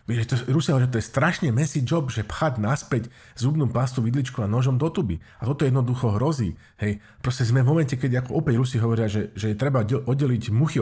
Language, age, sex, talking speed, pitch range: Slovak, 50-69, male, 215 wpm, 110-135 Hz